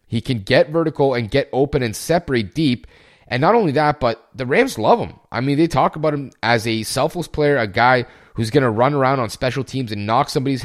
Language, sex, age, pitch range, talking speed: English, male, 30-49, 115-155 Hz, 235 wpm